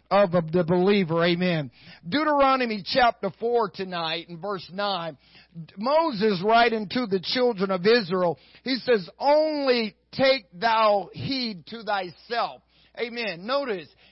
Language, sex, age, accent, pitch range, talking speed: English, male, 50-69, American, 185-240 Hz, 120 wpm